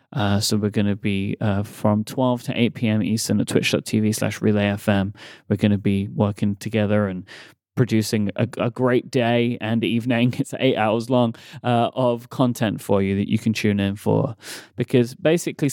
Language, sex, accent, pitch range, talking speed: English, male, British, 105-130 Hz, 185 wpm